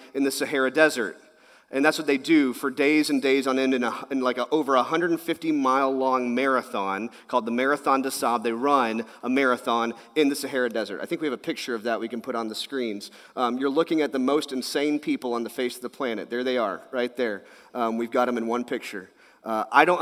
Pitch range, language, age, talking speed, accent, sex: 125-150 Hz, English, 40-59, 245 wpm, American, male